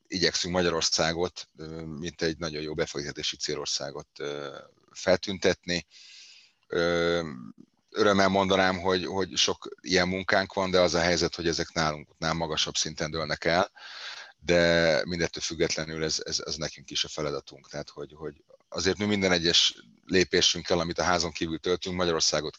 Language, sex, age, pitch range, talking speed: Hungarian, male, 30-49, 75-90 Hz, 140 wpm